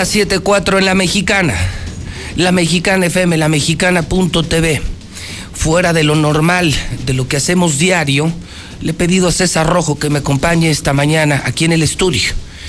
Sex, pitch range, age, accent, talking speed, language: male, 125-180 Hz, 50-69, Mexican, 165 wpm, Spanish